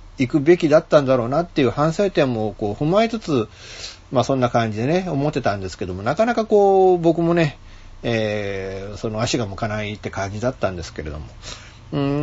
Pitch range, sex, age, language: 95-135 Hz, male, 40-59, Japanese